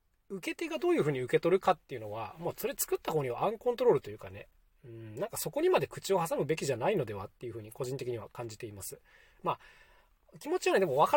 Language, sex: Japanese, male